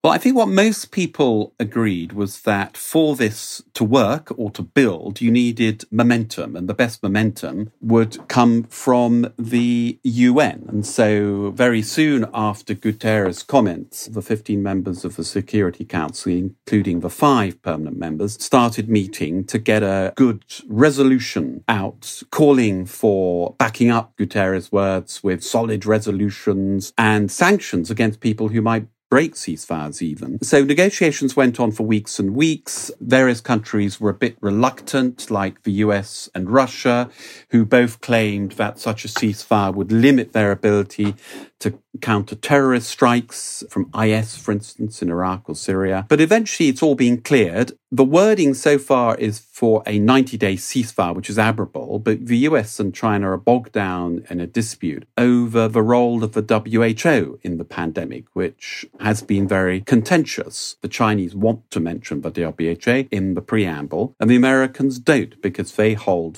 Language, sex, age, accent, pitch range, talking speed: English, male, 50-69, British, 100-120 Hz, 155 wpm